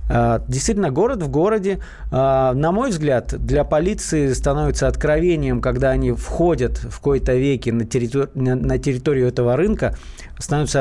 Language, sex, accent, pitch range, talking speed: Russian, male, native, 120-155 Hz, 130 wpm